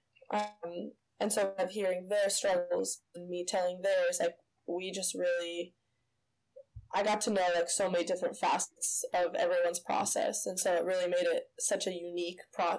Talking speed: 175 wpm